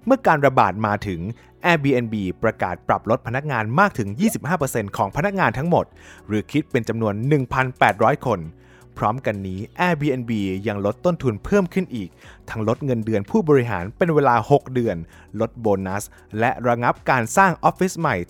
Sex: male